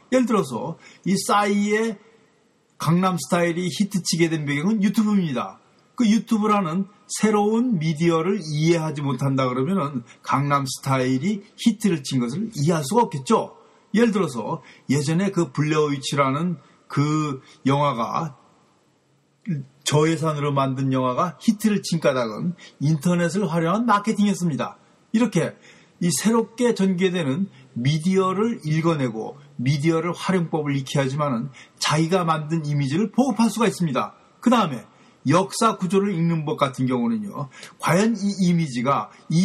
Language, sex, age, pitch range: Korean, male, 40-59, 150-205 Hz